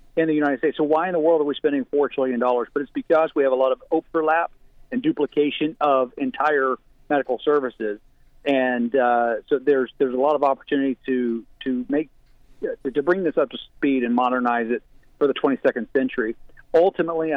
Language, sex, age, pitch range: English, male, 50-69, 130-155 Hz